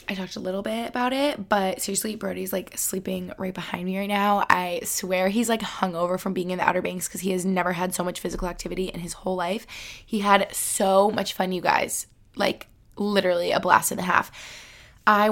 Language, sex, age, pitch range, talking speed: English, female, 20-39, 190-230 Hz, 220 wpm